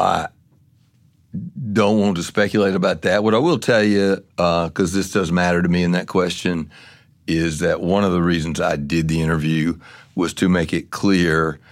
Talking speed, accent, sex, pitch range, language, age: 190 wpm, American, male, 85-105 Hz, English, 60-79